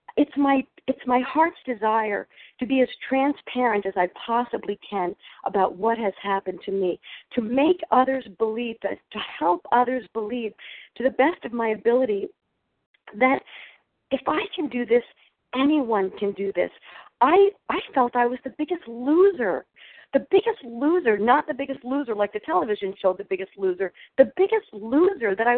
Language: English